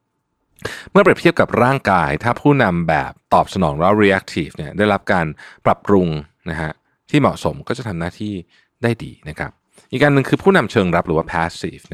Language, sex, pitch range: Thai, male, 85-115 Hz